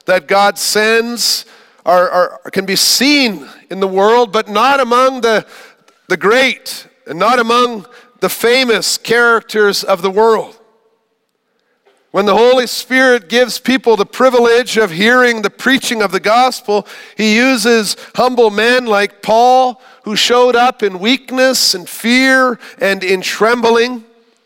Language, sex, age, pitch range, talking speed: English, male, 50-69, 185-235 Hz, 140 wpm